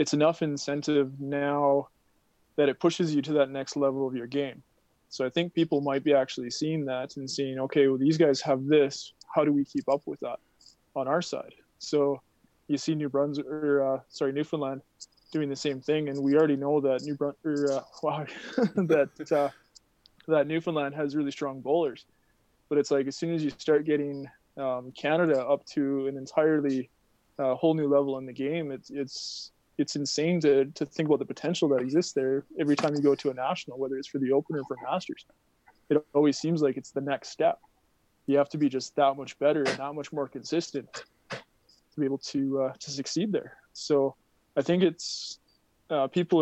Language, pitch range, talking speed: English, 135-150 Hz, 205 wpm